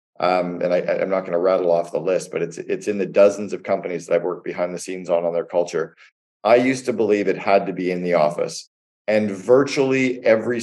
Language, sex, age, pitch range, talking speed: English, male, 40-59, 95-110 Hz, 245 wpm